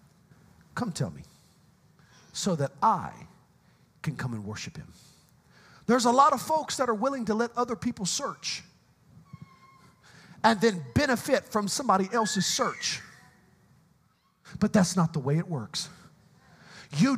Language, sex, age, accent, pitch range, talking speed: English, male, 40-59, American, 185-300 Hz, 135 wpm